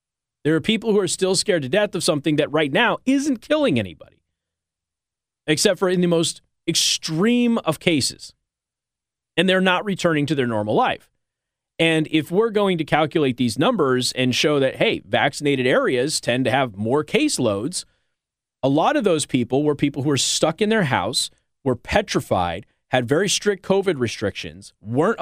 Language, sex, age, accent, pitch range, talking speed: English, male, 30-49, American, 120-165 Hz, 175 wpm